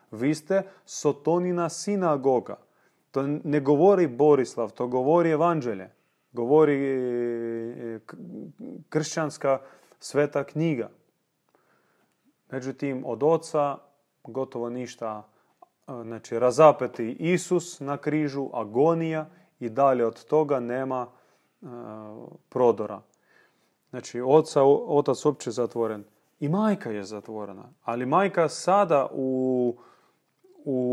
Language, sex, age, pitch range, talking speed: Croatian, male, 30-49, 120-155 Hz, 90 wpm